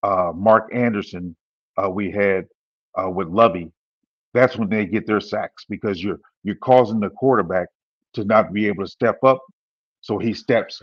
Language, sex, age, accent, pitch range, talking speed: English, male, 50-69, American, 100-130 Hz, 170 wpm